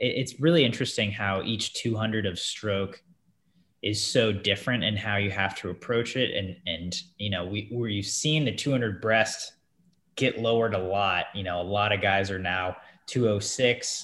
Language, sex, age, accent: English, male, 20-39, American